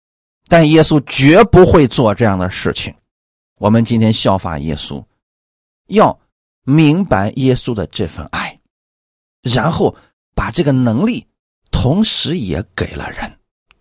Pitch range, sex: 100-155 Hz, male